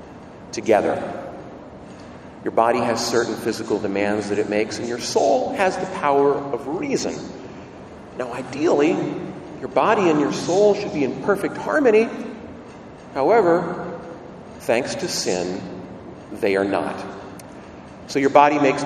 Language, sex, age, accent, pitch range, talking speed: English, male, 40-59, American, 130-195 Hz, 130 wpm